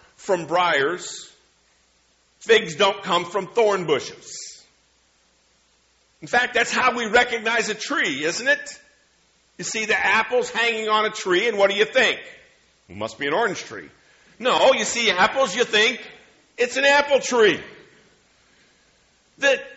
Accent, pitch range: American, 215-275 Hz